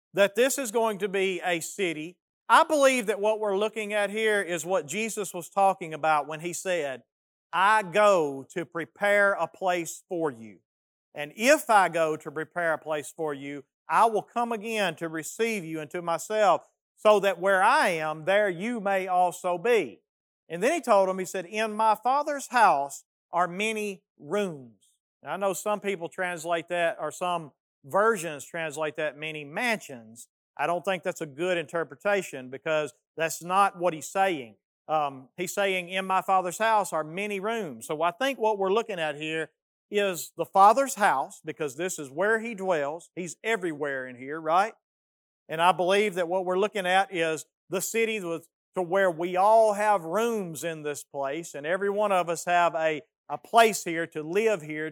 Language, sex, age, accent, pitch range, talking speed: English, male, 40-59, American, 155-205 Hz, 185 wpm